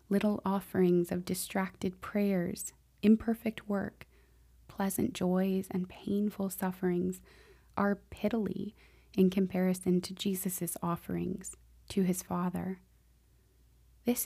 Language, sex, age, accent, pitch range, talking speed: English, female, 20-39, American, 175-200 Hz, 95 wpm